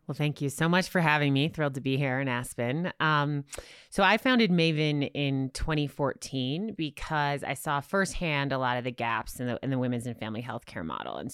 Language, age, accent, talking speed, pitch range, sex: English, 20-39, American, 215 wpm, 125-150 Hz, female